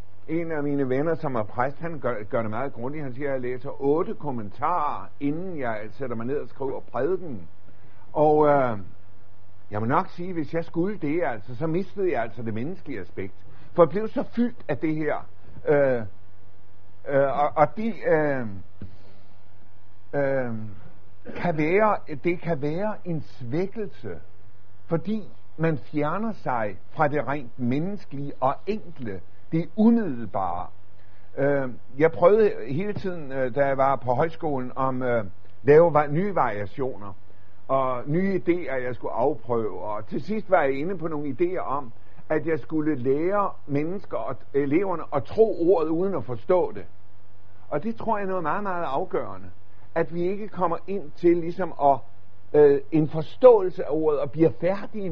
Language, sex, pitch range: Danish, male, 110-170 Hz